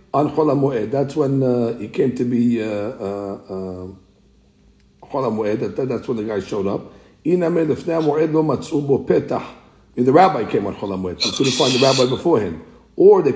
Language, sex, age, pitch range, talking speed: English, male, 60-79, 100-140 Hz, 165 wpm